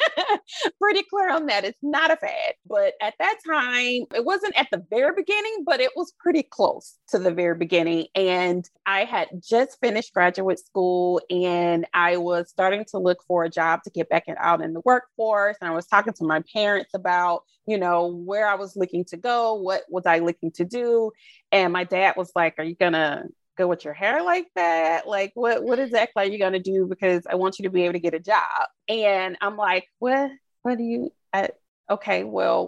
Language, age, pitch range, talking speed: English, 30-49, 175-240 Hz, 215 wpm